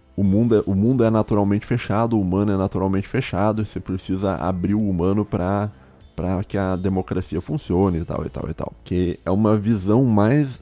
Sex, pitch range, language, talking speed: male, 90-110 Hz, Portuguese, 190 wpm